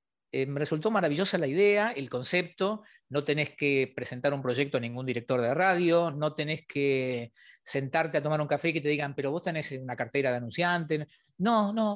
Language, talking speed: Spanish, 200 wpm